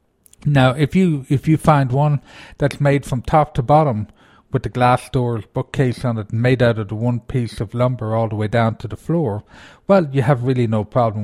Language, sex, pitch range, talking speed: English, male, 110-140 Hz, 220 wpm